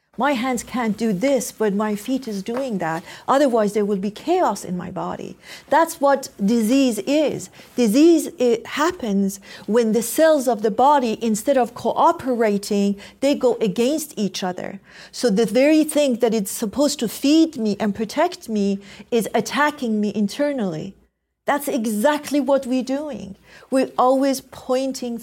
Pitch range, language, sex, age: 205-260 Hz, English, female, 50-69